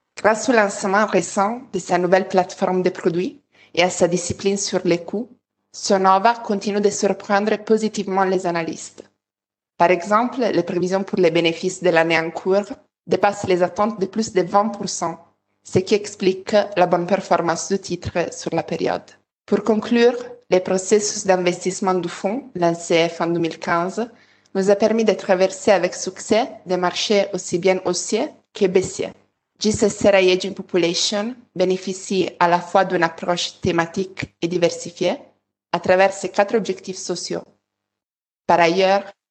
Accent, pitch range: Italian, 175-205 Hz